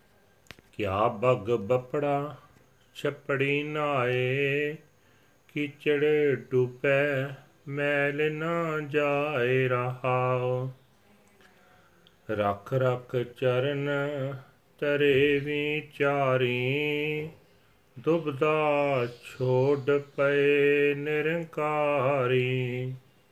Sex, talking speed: male, 55 wpm